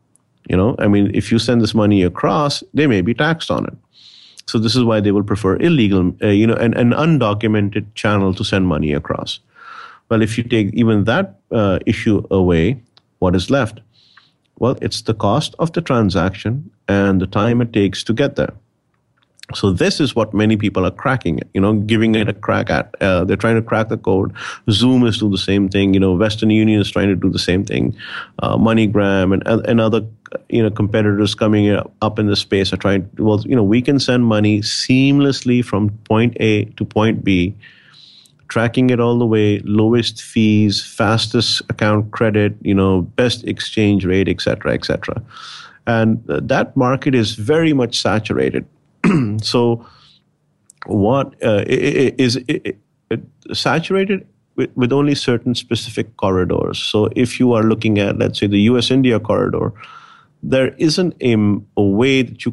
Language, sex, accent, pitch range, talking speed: English, male, Indian, 100-120 Hz, 180 wpm